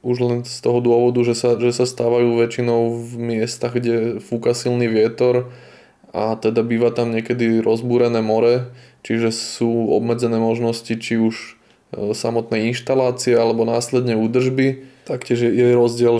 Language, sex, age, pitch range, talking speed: Slovak, male, 20-39, 115-125 Hz, 140 wpm